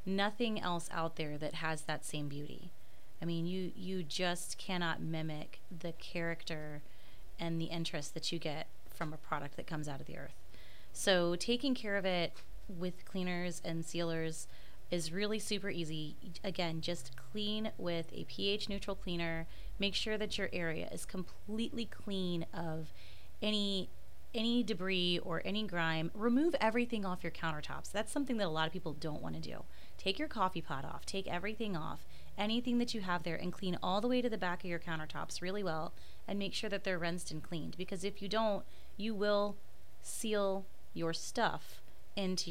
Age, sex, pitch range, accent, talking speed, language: 30-49, female, 160-200 Hz, American, 180 wpm, English